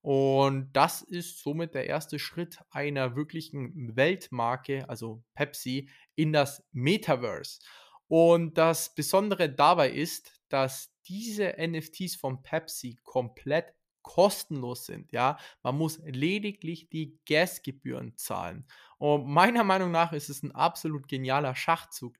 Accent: German